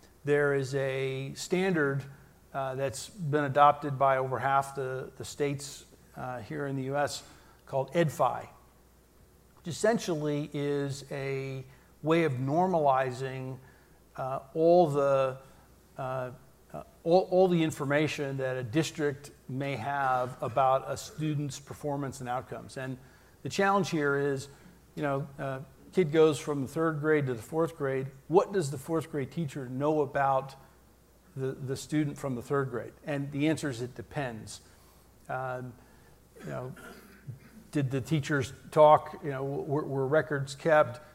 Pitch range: 135-155 Hz